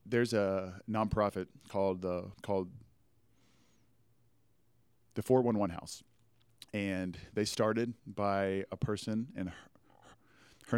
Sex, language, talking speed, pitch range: male, English, 115 wpm, 95-115 Hz